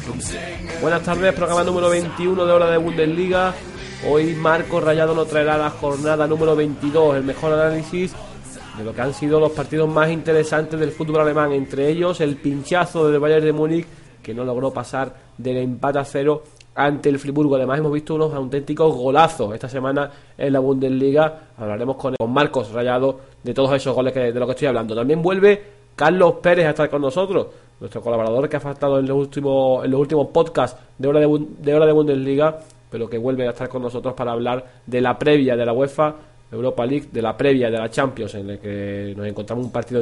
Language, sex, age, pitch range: Spanish, male, 30-49, 125-155 Hz